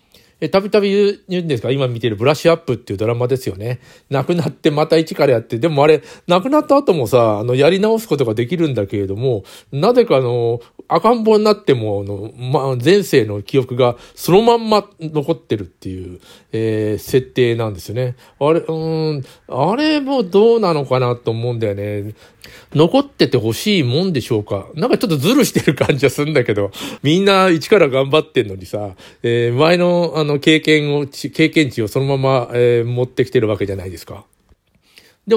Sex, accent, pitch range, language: male, native, 120-170 Hz, Japanese